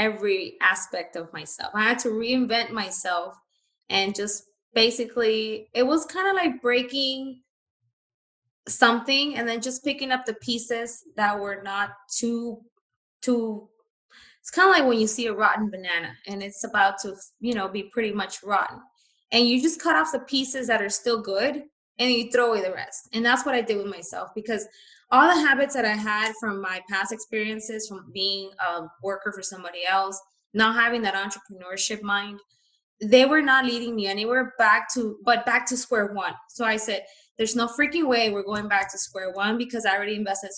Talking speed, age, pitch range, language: 190 wpm, 20-39, 200-245 Hz, English